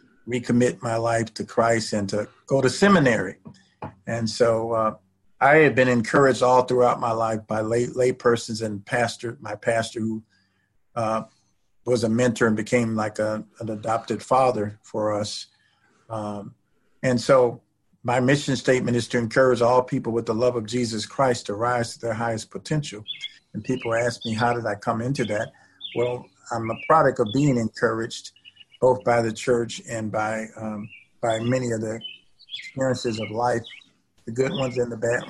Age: 50-69